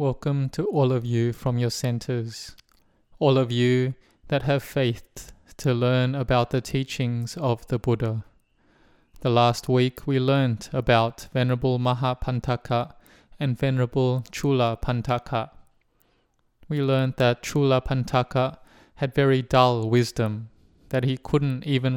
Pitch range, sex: 120-135 Hz, male